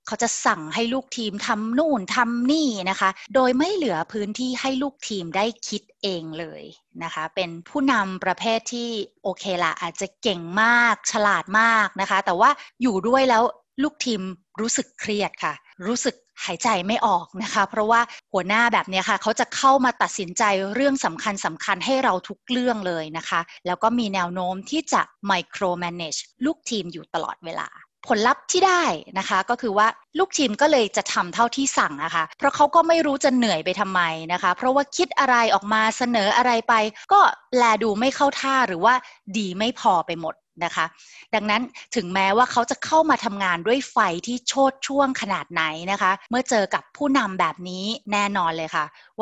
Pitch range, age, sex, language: 185-250 Hz, 20-39, female, Thai